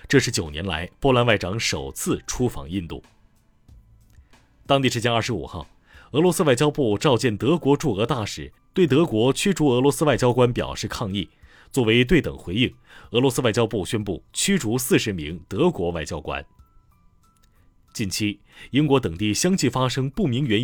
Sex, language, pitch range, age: male, Chinese, 95-135 Hz, 30-49